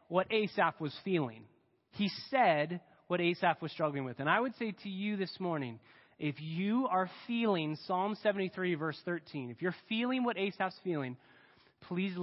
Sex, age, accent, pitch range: male, 20-39, American, 140-195 Hz